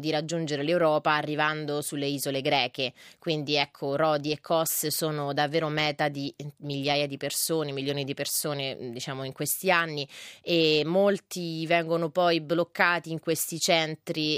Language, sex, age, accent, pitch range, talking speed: Italian, female, 30-49, native, 150-170 Hz, 140 wpm